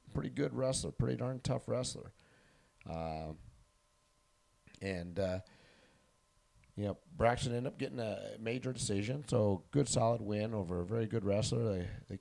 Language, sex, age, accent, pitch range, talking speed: English, male, 40-59, American, 100-120 Hz, 150 wpm